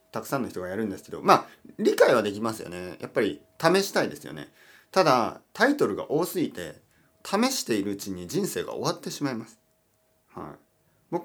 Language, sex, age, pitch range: Japanese, male, 40-59, 110-185 Hz